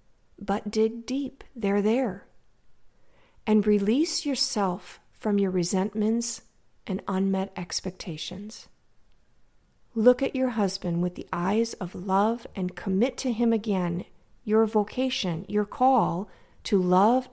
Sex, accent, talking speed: female, American, 120 wpm